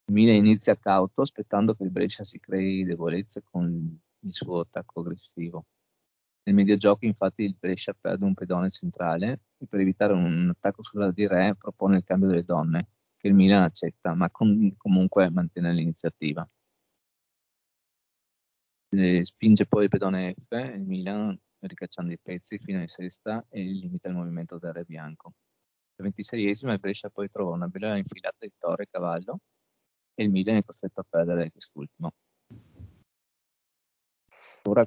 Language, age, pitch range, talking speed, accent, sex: Italian, 20-39, 90-105 Hz, 155 wpm, native, male